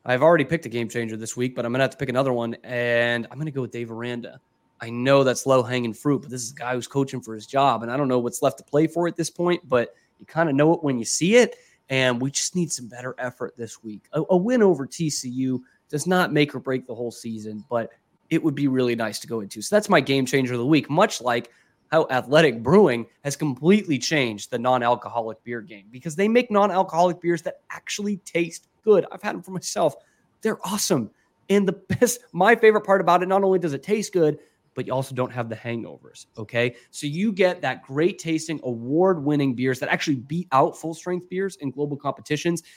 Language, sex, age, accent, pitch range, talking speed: English, male, 20-39, American, 120-170 Hz, 235 wpm